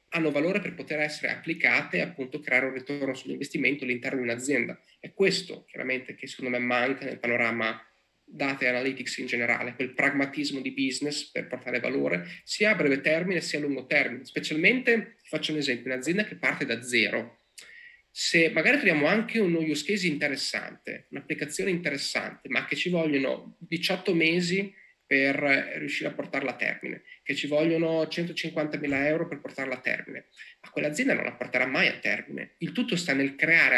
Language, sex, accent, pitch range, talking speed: Italian, male, native, 130-170 Hz, 170 wpm